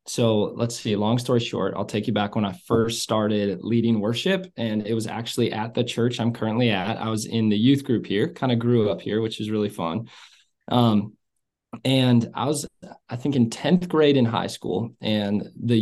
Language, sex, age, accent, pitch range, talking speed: English, male, 20-39, American, 110-145 Hz, 215 wpm